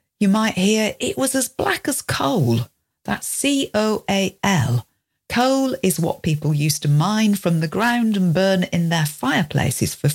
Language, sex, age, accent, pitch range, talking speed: English, female, 50-69, British, 165-240 Hz, 160 wpm